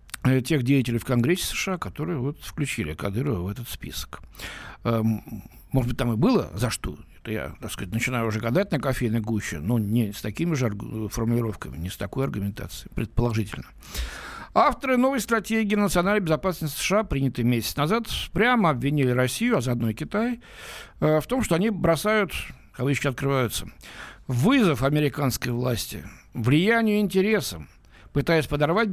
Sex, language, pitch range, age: male, Russian, 120-180 Hz, 60-79